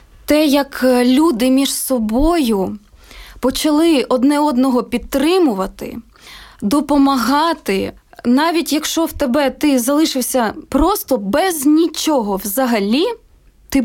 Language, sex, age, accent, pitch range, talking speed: Ukrainian, female, 20-39, native, 240-295 Hz, 90 wpm